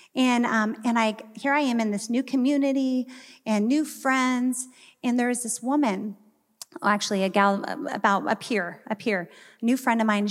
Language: English